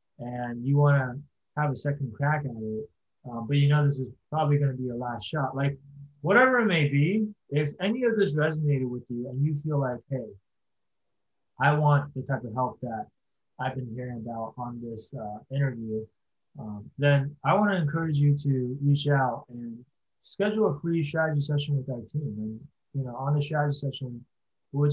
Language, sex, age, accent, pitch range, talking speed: English, male, 20-39, American, 125-150 Hz, 190 wpm